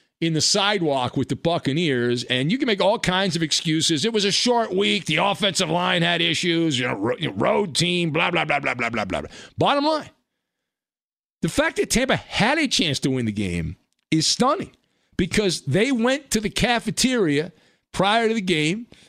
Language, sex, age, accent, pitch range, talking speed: English, male, 50-69, American, 145-205 Hz, 190 wpm